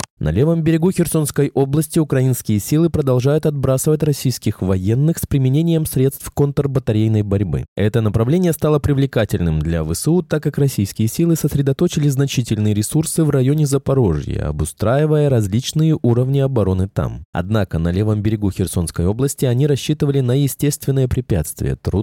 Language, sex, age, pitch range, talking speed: Russian, male, 20-39, 100-145 Hz, 130 wpm